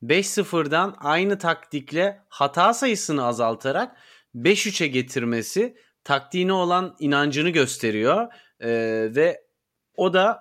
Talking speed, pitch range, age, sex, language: 90 wpm, 140-185 Hz, 30-49, male, Turkish